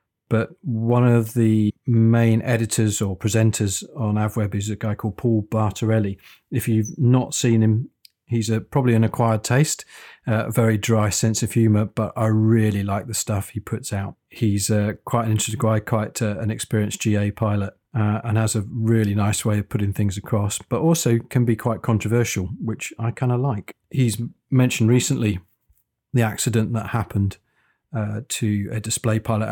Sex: male